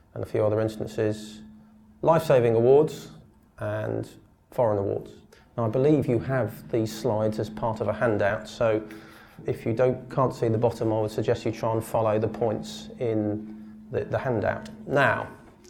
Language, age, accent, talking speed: English, 30-49, British, 170 wpm